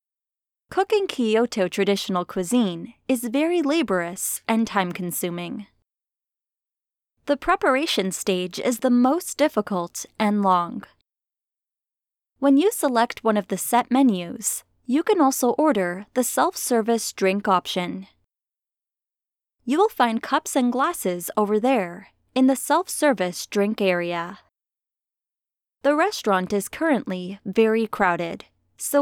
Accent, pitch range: American, 185-275 Hz